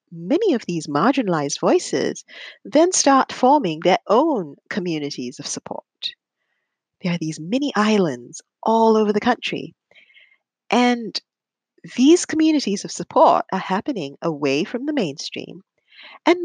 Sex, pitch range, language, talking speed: female, 165-255 Hz, English, 125 wpm